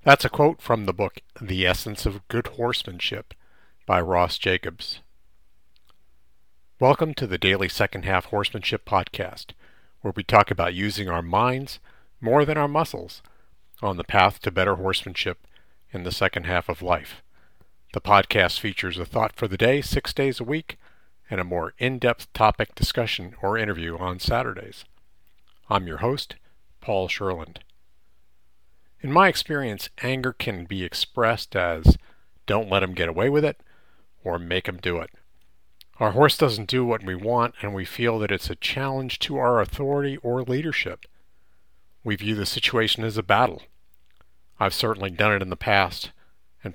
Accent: American